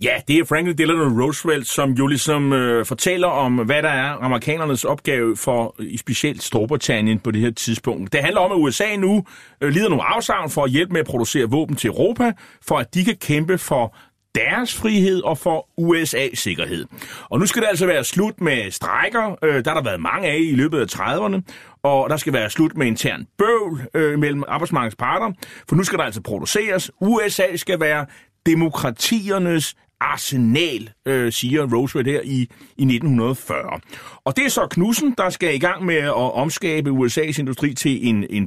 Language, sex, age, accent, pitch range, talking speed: Danish, male, 30-49, native, 125-175 Hz, 190 wpm